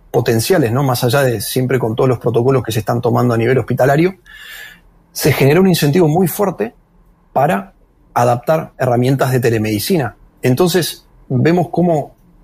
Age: 40-59